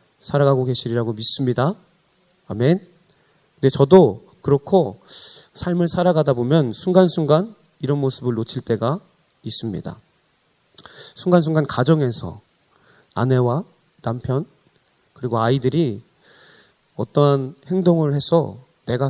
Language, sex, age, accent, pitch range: Korean, male, 30-49, native, 130-180 Hz